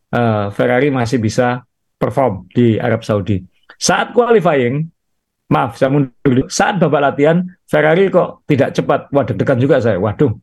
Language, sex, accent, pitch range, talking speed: Indonesian, male, native, 115-155 Hz, 130 wpm